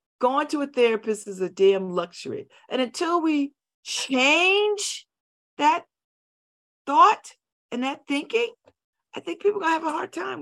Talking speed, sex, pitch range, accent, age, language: 150 wpm, female, 200-305 Hz, American, 50-69, English